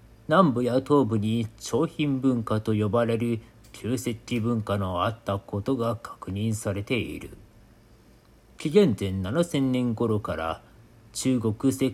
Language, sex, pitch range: Japanese, male, 105-140 Hz